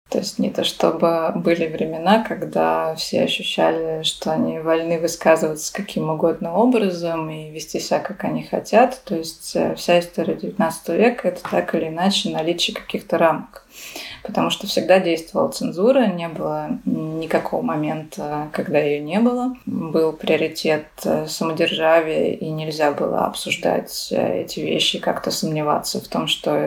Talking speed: 145 wpm